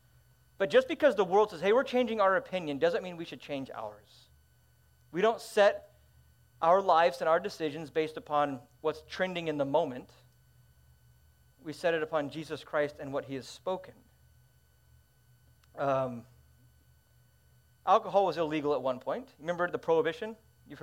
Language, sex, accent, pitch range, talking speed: English, male, American, 145-220 Hz, 155 wpm